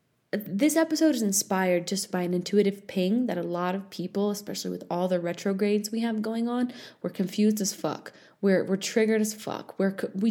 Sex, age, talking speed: female, 20-39, 200 wpm